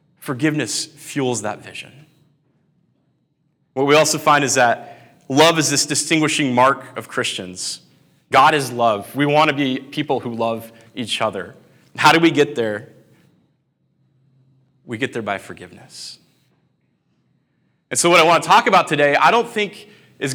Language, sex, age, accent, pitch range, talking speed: English, male, 20-39, American, 115-155 Hz, 155 wpm